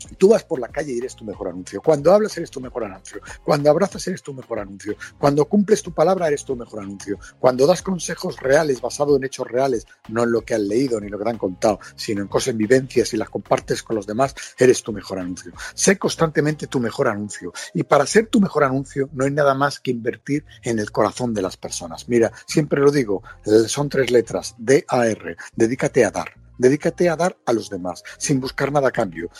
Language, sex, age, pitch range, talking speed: Spanish, male, 50-69, 115-175 Hz, 225 wpm